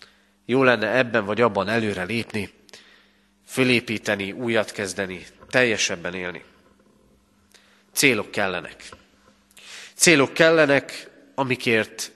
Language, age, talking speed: Hungarian, 40-59, 85 wpm